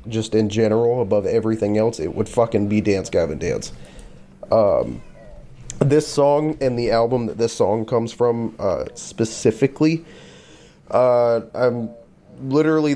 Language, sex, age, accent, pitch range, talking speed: English, male, 30-49, American, 105-130 Hz, 135 wpm